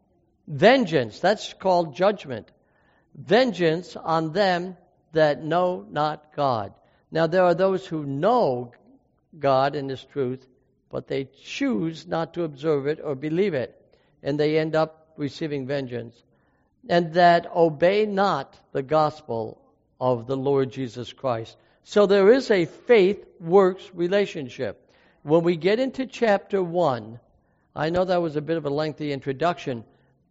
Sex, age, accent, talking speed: male, 60-79, American, 140 wpm